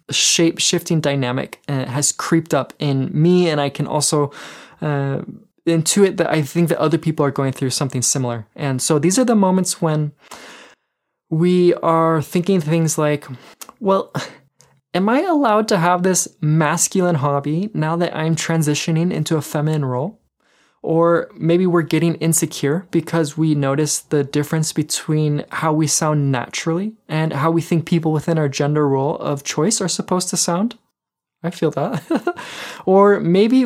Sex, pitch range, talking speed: male, 150-180 Hz, 155 wpm